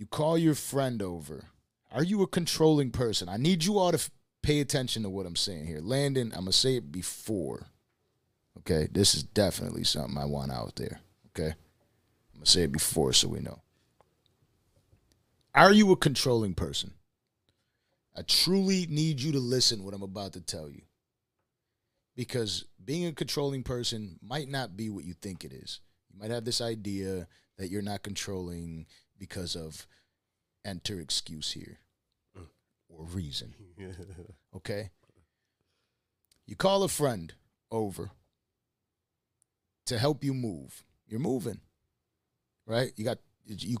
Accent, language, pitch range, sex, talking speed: American, English, 90-130 Hz, male, 155 wpm